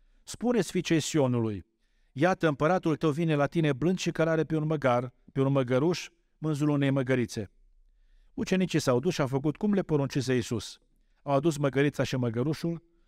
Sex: male